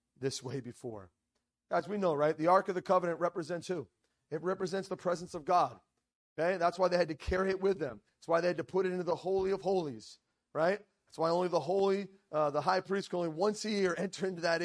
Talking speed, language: 245 wpm, English